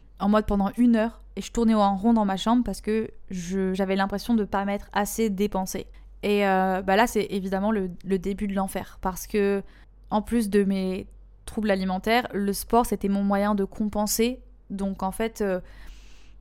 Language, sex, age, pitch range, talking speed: French, female, 20-39, 195-230 Hz, 200 wpm